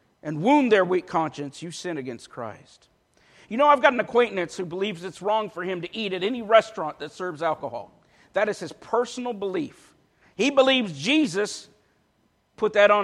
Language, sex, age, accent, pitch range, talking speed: English, male, 50-69, American, 185-235 Hz, 185 wpm